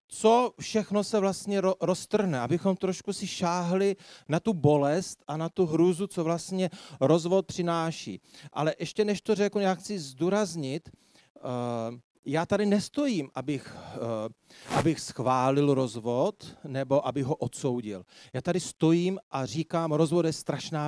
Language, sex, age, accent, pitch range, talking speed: Czech, male, 40-59, native, 140-195 Hz, 145 wpm